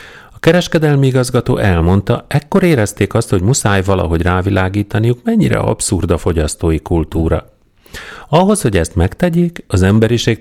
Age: 40-59